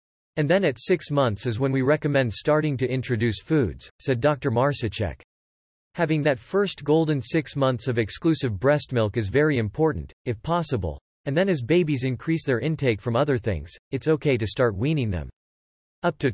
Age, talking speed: 40-59, 180 wpm